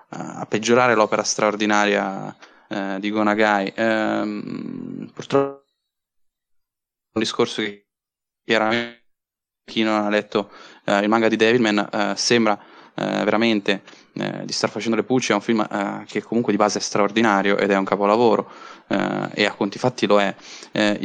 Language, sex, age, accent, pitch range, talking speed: Italian, male, 10-29, native, 105-115 Hz, 155 wpm